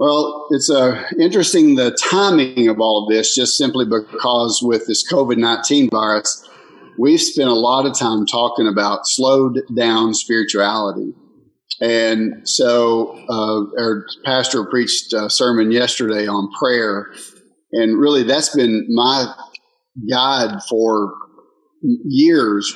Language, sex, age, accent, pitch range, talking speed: English, male, 50-69, American, 110-135 Hz, 120 wpm